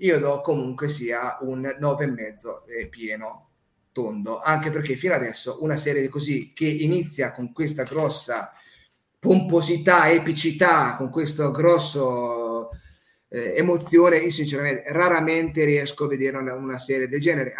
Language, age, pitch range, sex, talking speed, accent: Italian, 30-49, 125-155 Hz, male, 145 wpm, native